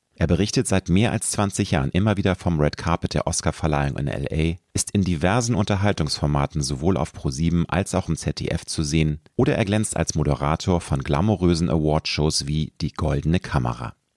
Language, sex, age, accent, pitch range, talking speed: German, male, 40-59, German, 80-105 Hz, 175 wpm